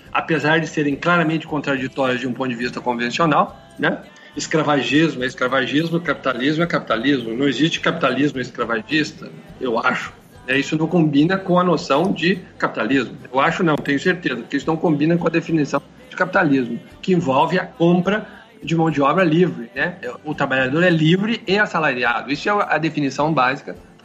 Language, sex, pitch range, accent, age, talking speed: Portuguese, male, 140-180 Hz, Brazilian, 50-69, 170 wpm